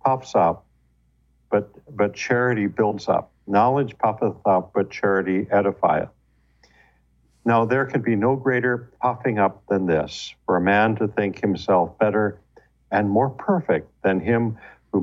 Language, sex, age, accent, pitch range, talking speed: English, male, 50-69, American, 75-110 Hz, 145 wpm